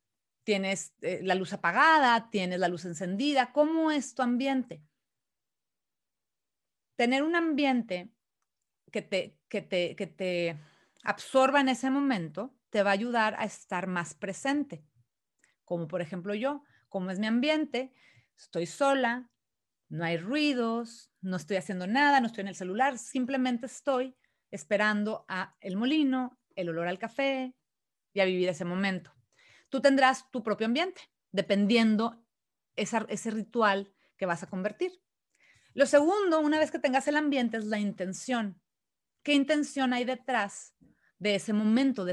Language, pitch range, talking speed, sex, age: Spanish, 185-255 Hz, 145 wpm, female, 30-49